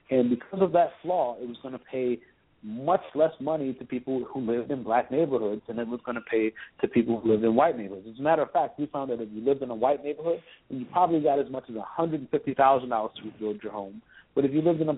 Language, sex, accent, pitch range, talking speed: English, male, American, 125-165 Hz, 260 wpm